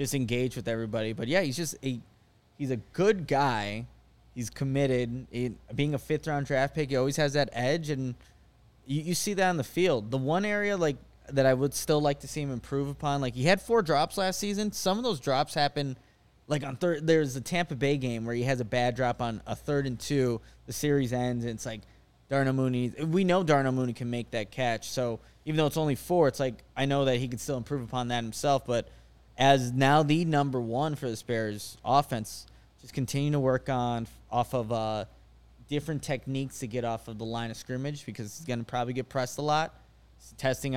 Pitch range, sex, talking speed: 120-150 Hz, male, 225 wpm